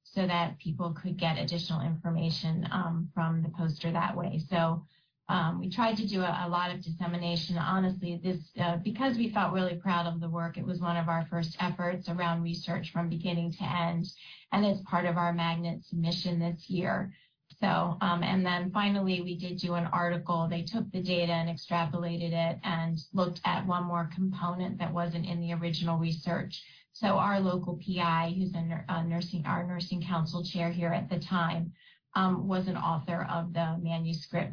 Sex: female